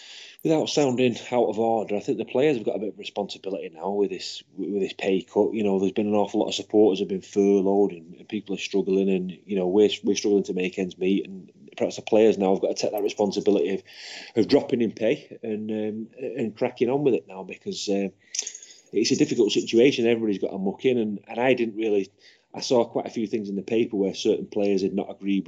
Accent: British